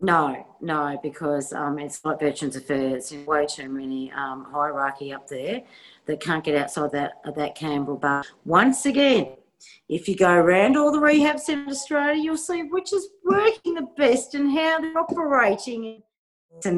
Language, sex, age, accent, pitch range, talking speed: English, female, 40-59, Australian, 155-215 Hz, 175 wpm